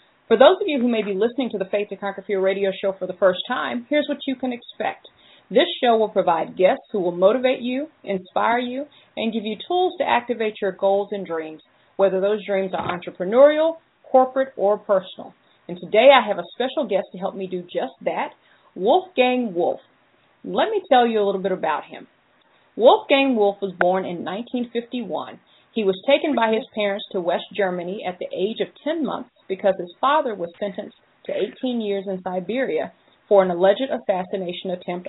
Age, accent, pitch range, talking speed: 40-59, American, 190-245 Hz, 195 wpm